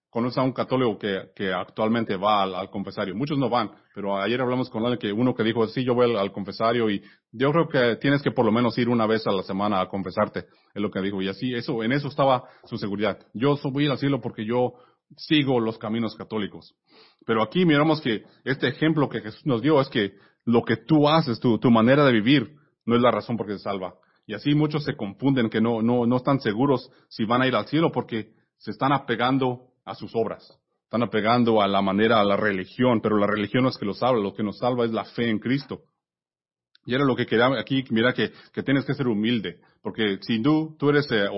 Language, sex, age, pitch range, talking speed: English, male, 30-49, 105-135 Hz, 240 wpm